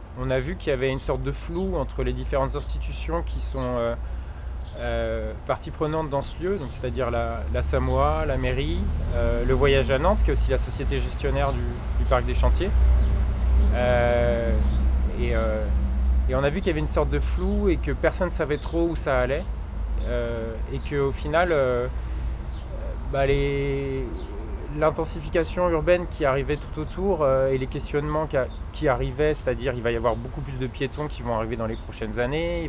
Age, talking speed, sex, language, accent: 20-39, 200 wpm, male, French, French